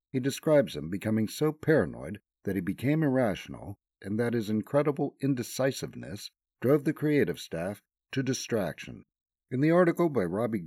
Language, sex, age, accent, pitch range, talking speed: English, male, 50-69, American, 105-145 Hz, 145 wpm